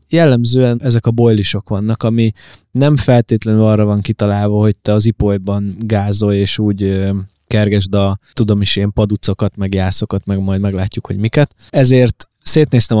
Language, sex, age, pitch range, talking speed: Hungarian, male, 20-39, 100-120 Hz, 155 wpm